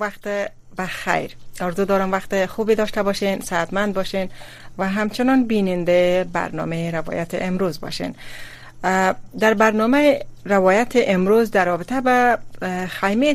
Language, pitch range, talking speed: Persian, 165-195 Hz, 115 wpm